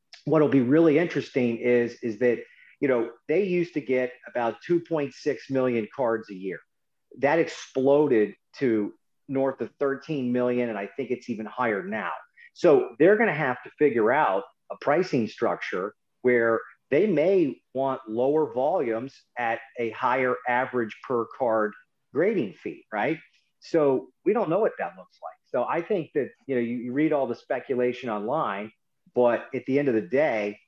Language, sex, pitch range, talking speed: English, male, 115-140 Hz, 170 wpm